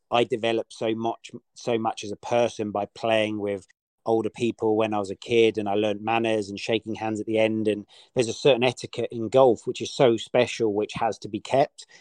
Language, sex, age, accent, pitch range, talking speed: English, male, 40-59, British, 110-120 Hz, 225 wpm